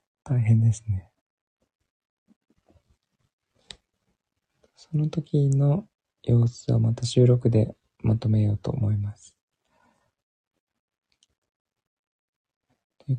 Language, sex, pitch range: Japanese, male, 110-125 Hz